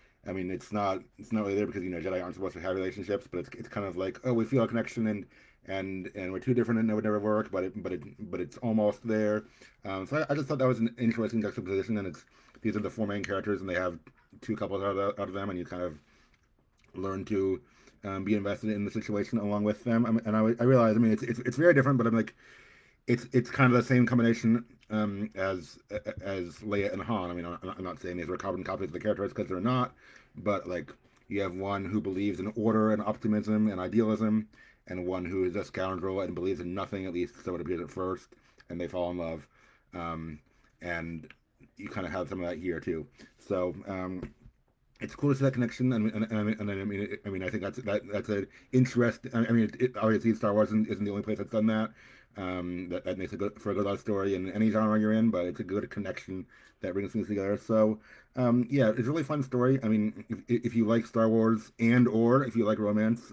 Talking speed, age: 250 wpm, 30-49